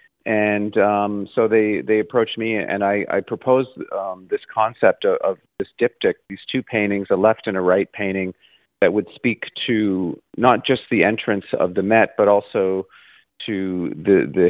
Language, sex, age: English, male, 40-59